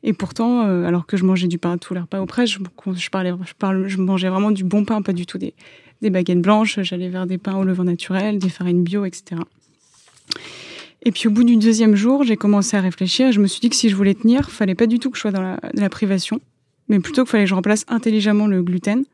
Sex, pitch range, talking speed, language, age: female, 185-215 Hz, 265 wpm, French, 20-39